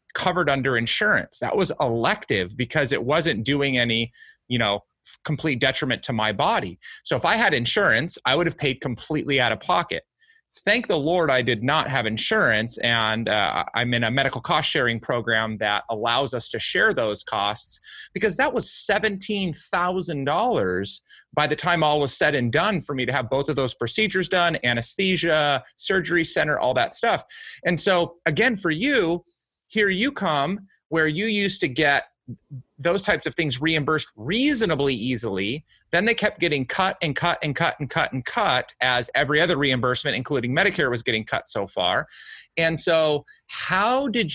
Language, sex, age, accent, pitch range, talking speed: English, male, 30-49, American, 130-175 Hz, 175 wpm